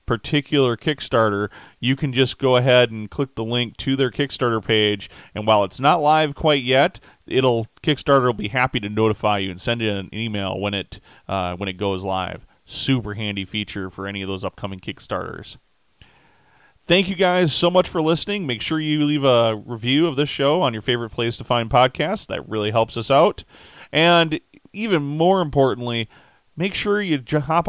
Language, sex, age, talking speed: English, male, 30-49, 190 wpm